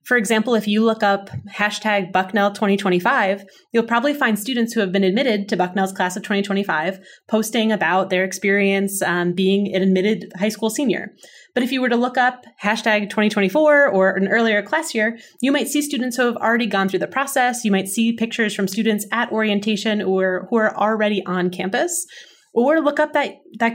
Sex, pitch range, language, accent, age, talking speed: female, 190-235 Hz, English, American, 20-39, 195 wpm